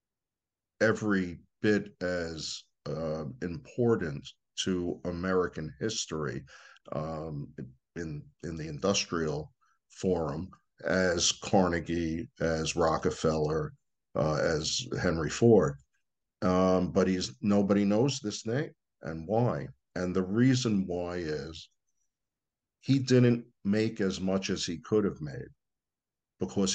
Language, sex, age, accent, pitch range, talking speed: English, male, 50-69, American, 85-100 Hz, 105 wpm